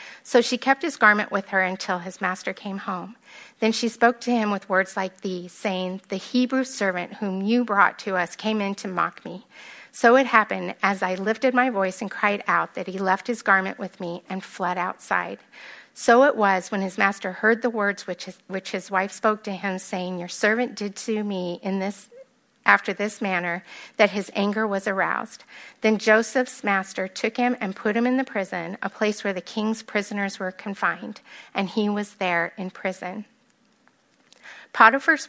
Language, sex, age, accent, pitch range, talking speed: English, female, 40-59, American, 190-225 Hz, 190 wpm